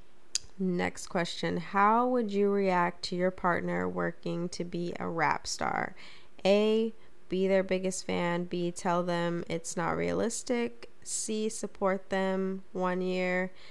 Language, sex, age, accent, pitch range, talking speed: English, female, 10-29, American, 170-195 Hz, 135 wpm